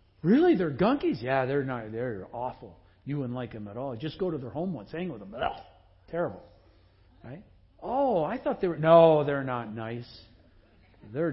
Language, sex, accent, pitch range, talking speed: English, male, American, 120-165 Hz, 190 wpm